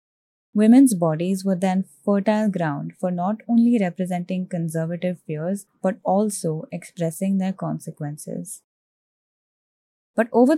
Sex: female